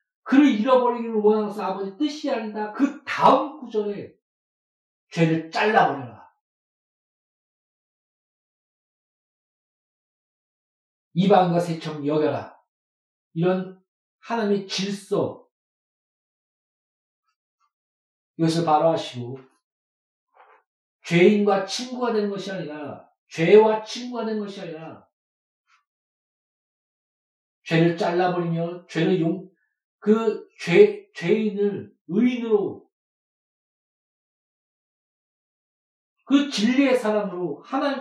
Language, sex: Korean, male